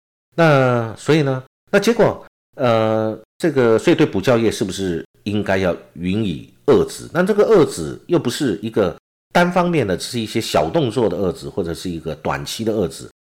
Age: 50-69